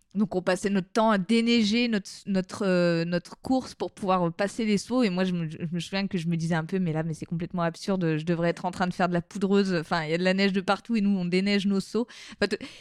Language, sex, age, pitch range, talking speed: French, female, 20-39, 175-220 Hz, 290 wpm